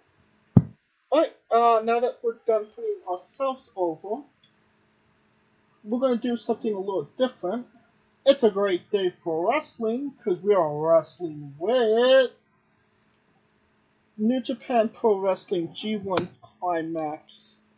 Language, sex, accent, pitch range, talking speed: English, male, American, 175-235 Hz, 115 wpm